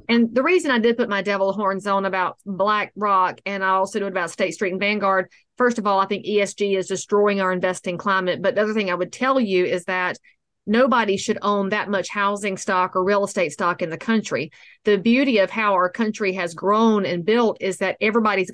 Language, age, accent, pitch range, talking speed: English, 40-59, American, 195-225 Hz, 225 wpm